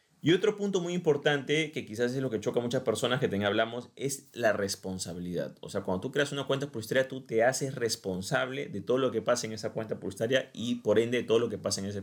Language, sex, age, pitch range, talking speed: Spanish, male, 30-49, 105-130 Hz, 255 wpm